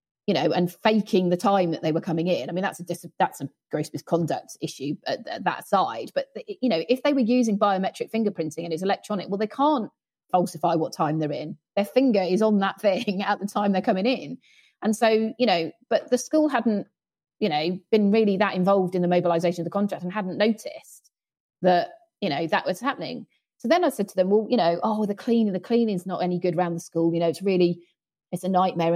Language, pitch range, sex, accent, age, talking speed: English, 180-255 Hz, female, British, 30-49, 235 wpm